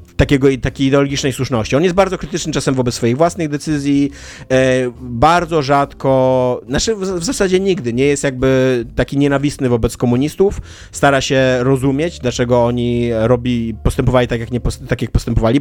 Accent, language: native, Polish